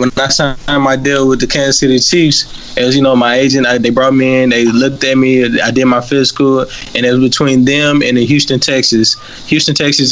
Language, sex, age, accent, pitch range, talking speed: English, male, 20-39, American, 125-135 Hz, 230 wpm